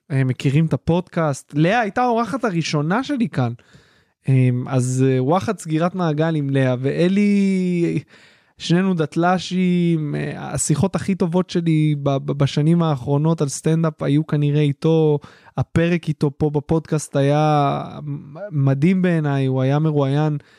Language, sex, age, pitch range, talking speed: Hebrew, male, 20-39, 140-180 Hz, 115 wpm